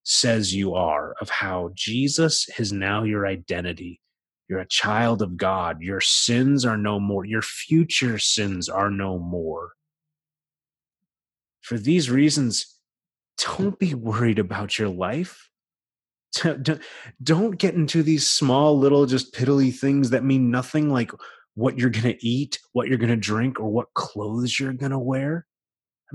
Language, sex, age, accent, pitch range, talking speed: English, male, 30-49, American, 105-145 Hz, 150 wpm